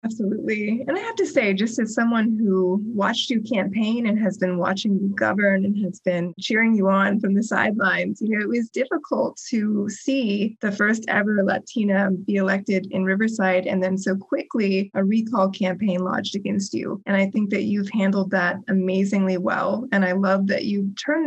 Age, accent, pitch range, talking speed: 20-39, American, 190-225 Hz, 190 wpm